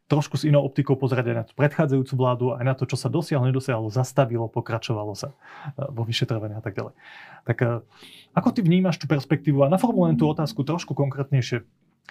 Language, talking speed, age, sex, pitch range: Slovak, 180 wpm, 30-49, male, 120-145 Hz